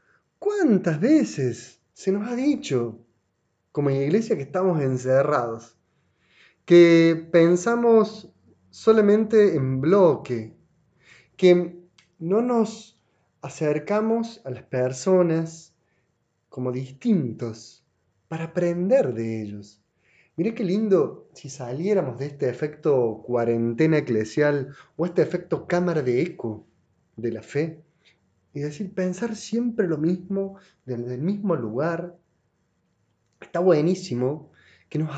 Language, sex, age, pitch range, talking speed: Spanish, male, 30-49, 115-180 Hz, 105 wpm